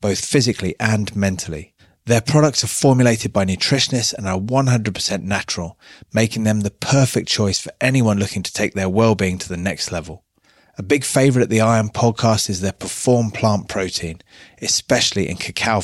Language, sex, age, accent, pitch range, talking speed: English, male, 30-49, British, 95-120 Hz, 170 wpm